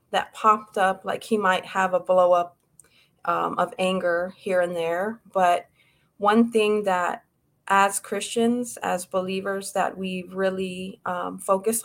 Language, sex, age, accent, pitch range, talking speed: English, female, 30-49, American, 170-195 Hz, 145 wpm